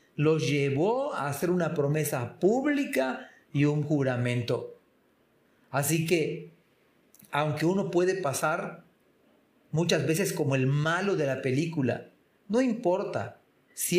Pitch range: 145-190 Hz